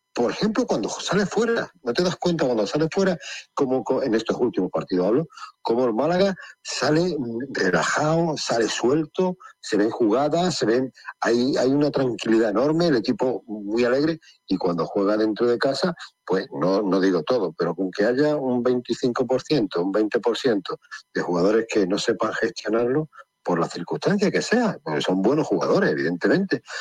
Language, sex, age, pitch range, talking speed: Spanish, male, 50-69, 120-165 Hz, 165 wpm